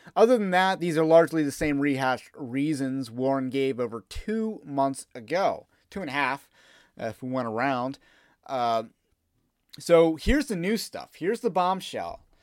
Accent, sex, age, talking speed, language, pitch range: American, male, 30-49, 165 wpm, English, 140-180 Hz